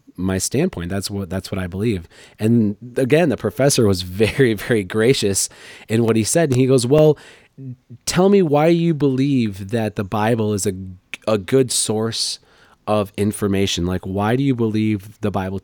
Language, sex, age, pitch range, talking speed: English, male, 30-49, 100-120 Hz, 175 wpm